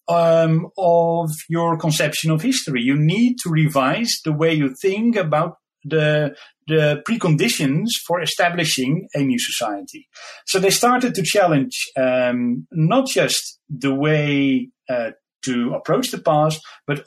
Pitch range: 130-170 Hz